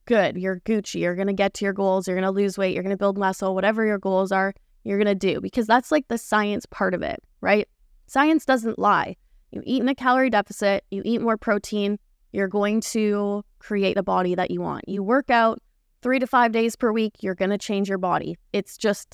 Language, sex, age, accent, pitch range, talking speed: English, female, 20-39, American, 195-230 Hz, 240 wpm